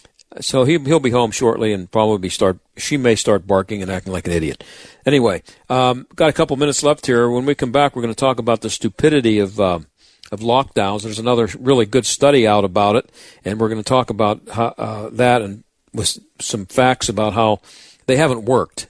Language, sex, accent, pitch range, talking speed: English, male, American, 110-145 Hz, 215 wpm